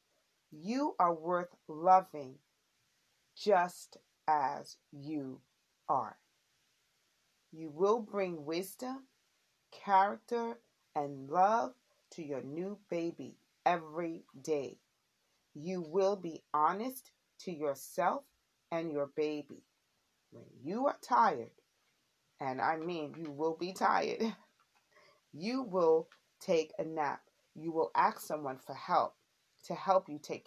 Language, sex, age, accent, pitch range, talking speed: English, female, 30-49, American, 150-195 Hz, 110 wpm